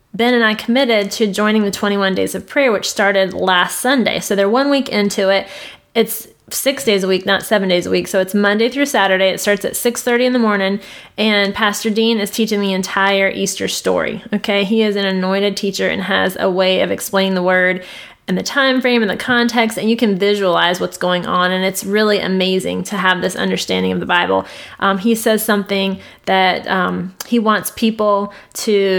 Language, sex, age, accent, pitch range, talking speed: English, female, 20-39, American, 190-220 Hz, 210 wpm